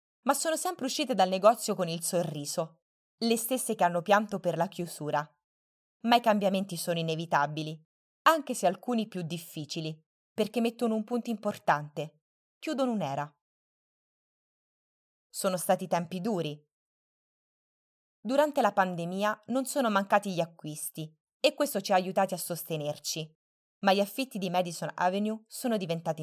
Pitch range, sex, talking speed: 160-220 Hz, female, 140 wpm